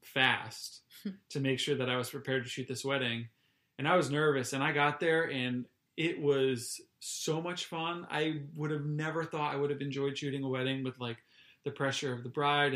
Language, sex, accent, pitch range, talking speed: English, male, American, 125-155 Hz, 210 wpm